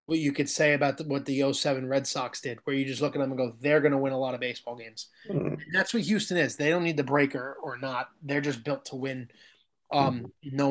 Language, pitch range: English, 135-160 Hz